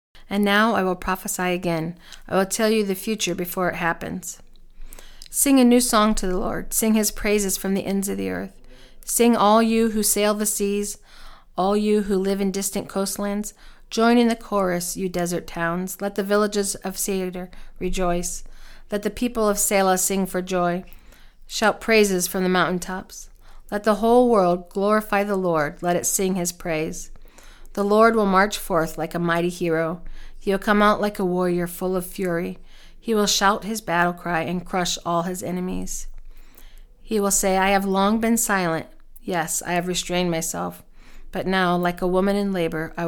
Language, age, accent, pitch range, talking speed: English, 40-59, American, 175-205 Hz, 190 wpm